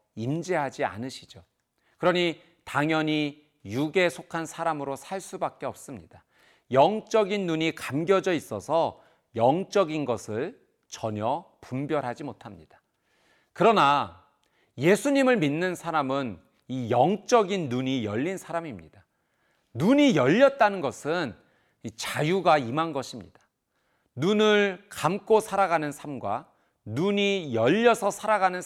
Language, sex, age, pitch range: Korean, male, 40-59, 130-190 Hz